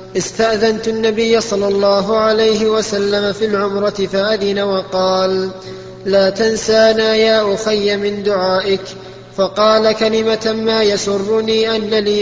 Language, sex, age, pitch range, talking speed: Arabic, male, 20-39, 195-220 Hz, 110 wpm